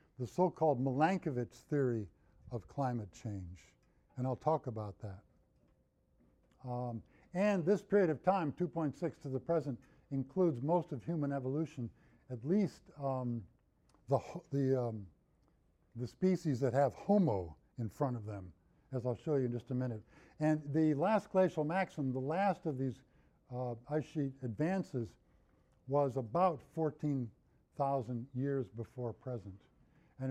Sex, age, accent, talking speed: male, 50-69, American, 135 wpm